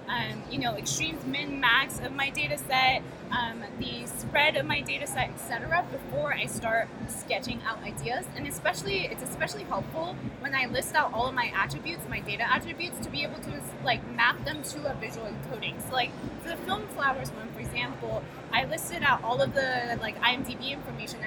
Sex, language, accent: female, English, American